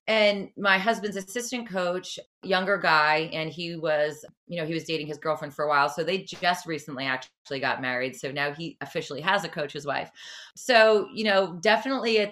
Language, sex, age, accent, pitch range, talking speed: English, female, 30-49, American, 150-200 Hz, 200 wpm